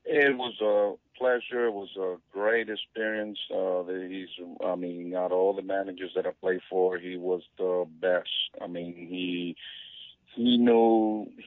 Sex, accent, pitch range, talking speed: male, American, 95-120 Hz, 160 wpm